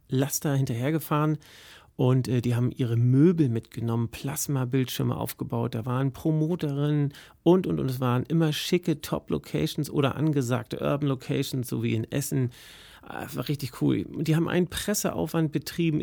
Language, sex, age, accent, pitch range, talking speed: German, male, 40-59, German, 120-150 Hz, 140 wpm